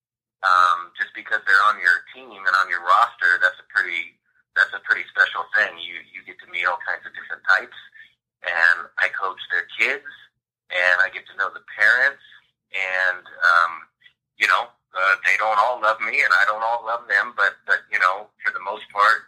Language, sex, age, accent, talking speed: English, male, 30-49, American, 200 wpm